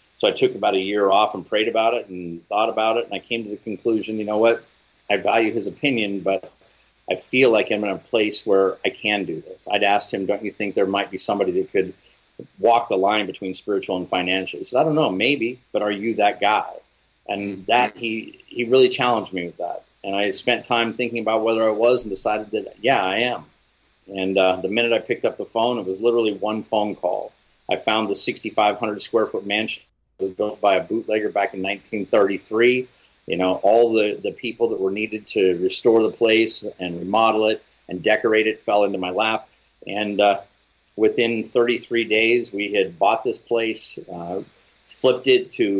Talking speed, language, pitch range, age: 210 wpm, English, 100-115 Hz, 40-59